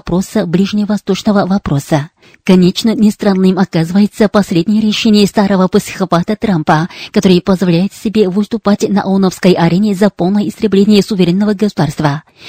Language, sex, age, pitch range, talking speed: Russian, female, 30-49, 180-210 Hz, 110 wpm